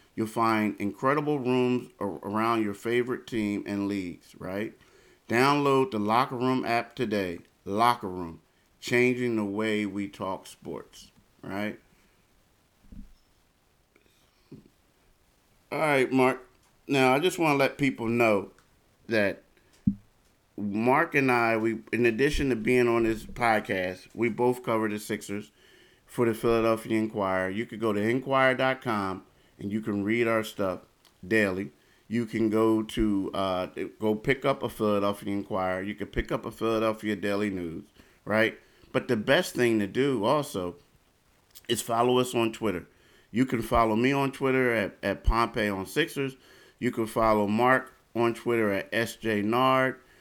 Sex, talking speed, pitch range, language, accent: male, 145 wpm, 105-125 Hz, English, American